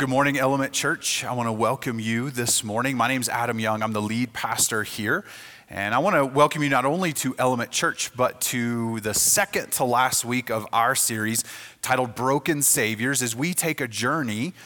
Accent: American